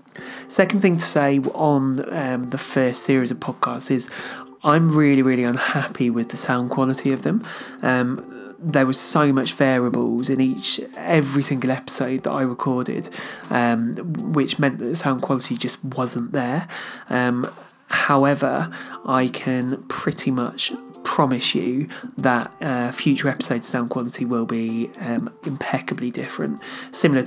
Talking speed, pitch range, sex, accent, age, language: 145 wpm, 120-135 Hz, male, British, 30-49, English